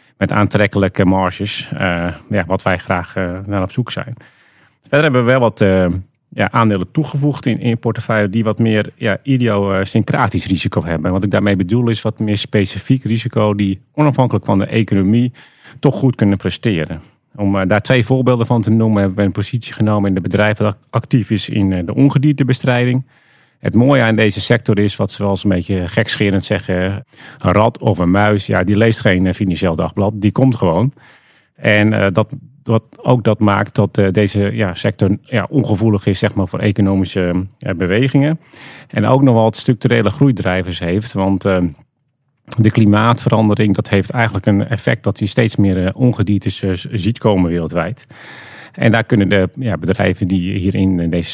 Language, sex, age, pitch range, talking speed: English, male, 40-59, 95-120 Hz, 175 wpm